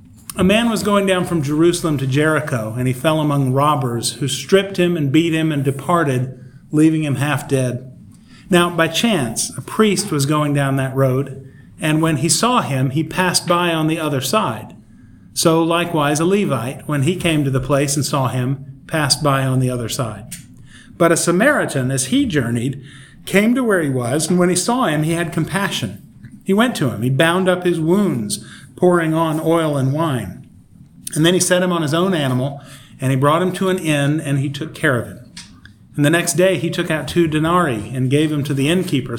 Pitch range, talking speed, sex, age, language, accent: 135-175 Hz, 210 wpm, male, 40-59, English, American